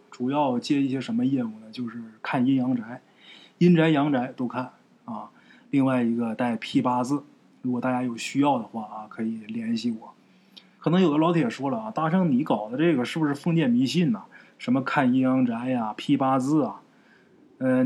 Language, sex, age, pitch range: Chinese, male, 20-39, 135-215 Hz